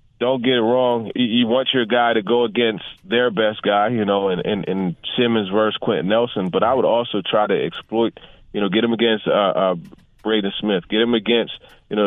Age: 30-49